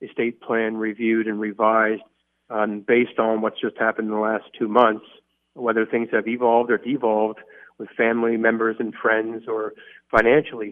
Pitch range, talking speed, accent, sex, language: 110-120 Hz, 160 wpm, American, male, English